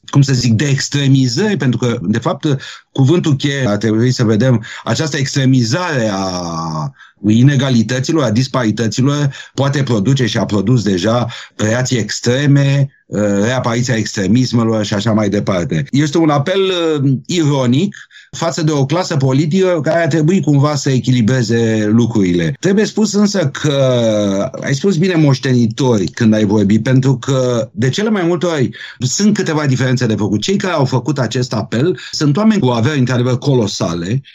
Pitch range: 115-150 Hz